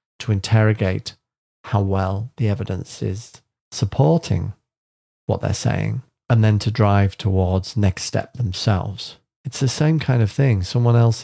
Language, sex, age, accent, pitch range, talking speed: English, male, 40-59, British, 100-125 Hz, 145 wpm